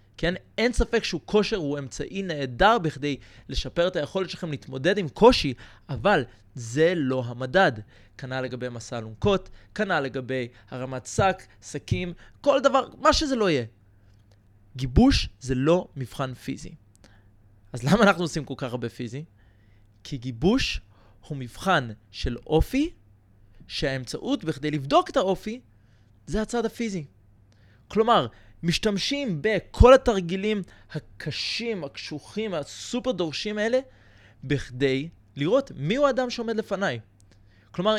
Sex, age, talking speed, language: male, 20-39, 125 wpm, Hebrew